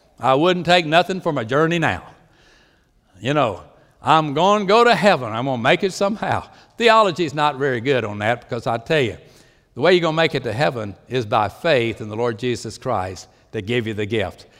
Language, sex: English, male